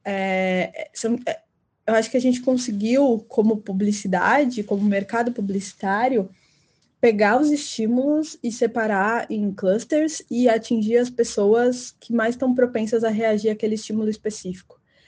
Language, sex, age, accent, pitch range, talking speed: Portuguese, female, 10-29, Brazilian, 190-235 Hz, 125 wpm